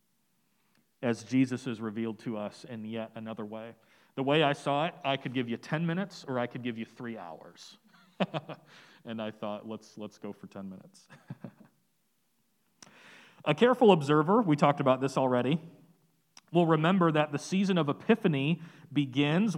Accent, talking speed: American, 160 wpm